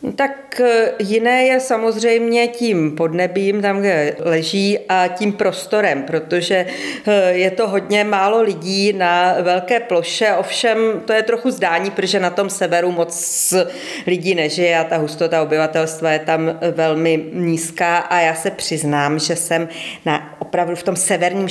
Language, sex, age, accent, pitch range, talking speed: Czech, female, 40-59, native, 155-180 Hz, 140 wpm